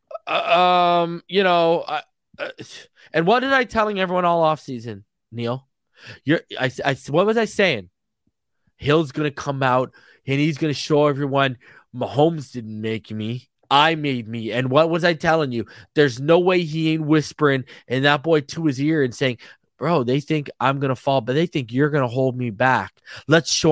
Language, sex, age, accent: English, male, 20-39, American